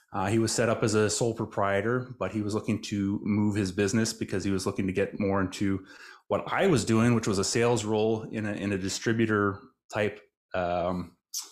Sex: male